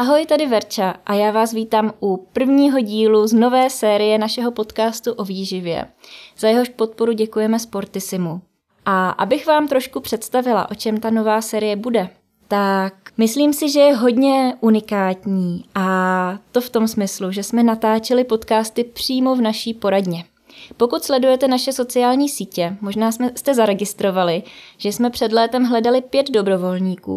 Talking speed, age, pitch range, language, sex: 150 wpm, 20-39, 200-240 Hz, Czech, female